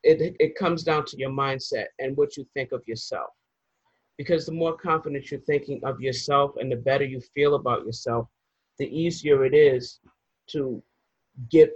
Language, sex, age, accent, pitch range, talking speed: English, male, 40-59, American, 140-180 Hz, 175 wpm